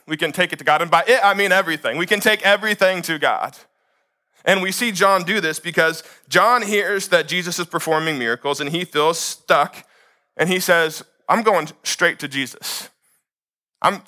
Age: 20-39